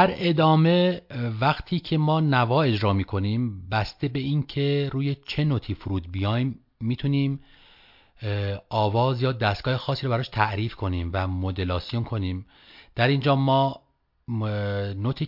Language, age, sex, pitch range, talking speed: Persian, 40-59, male, 95-125 Hz, 130 wpm